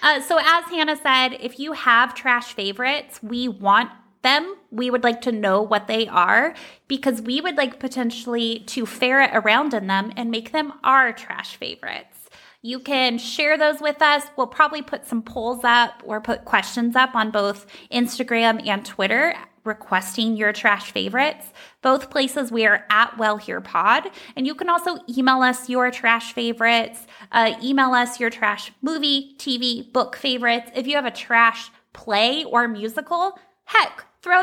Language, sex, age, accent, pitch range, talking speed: English, female, 20-39, American, 225-275 Hz, 170 wpm